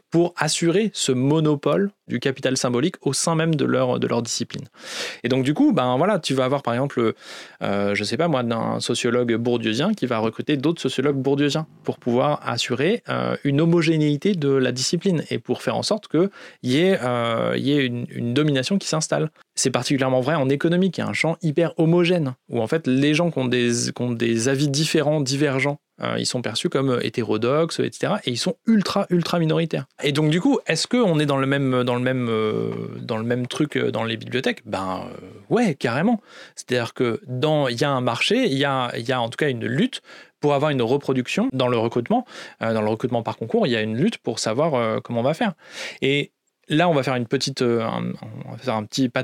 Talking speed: 210 wpm